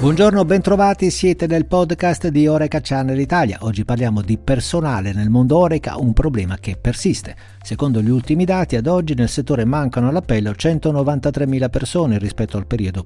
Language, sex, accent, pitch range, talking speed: Italian, male, native, 110-150 Hz, 160 wpm